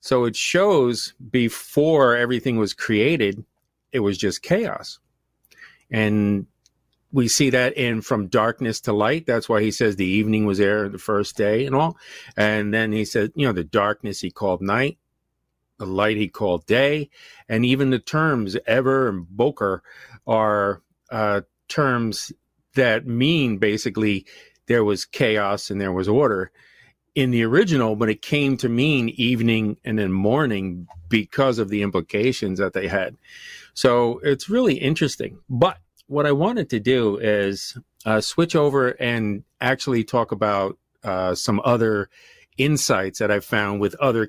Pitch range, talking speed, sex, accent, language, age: 105-130 Hz, 155 wpm, male, American, English, 40-59